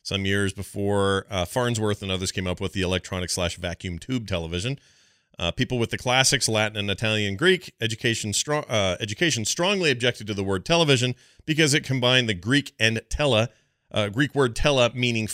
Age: 40-59